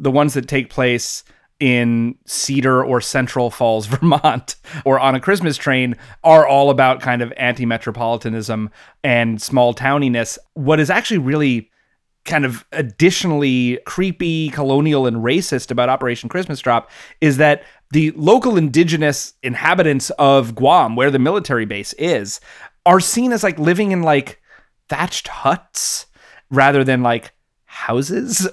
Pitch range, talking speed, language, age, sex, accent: 130-175 Hz, 140 wpm, English, 30-49, male, American